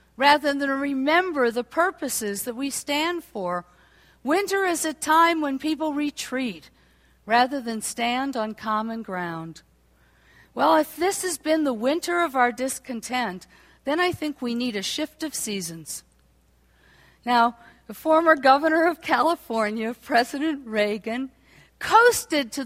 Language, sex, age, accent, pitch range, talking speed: English, female, 50-69, American, 210-305 Hz, 140 wpm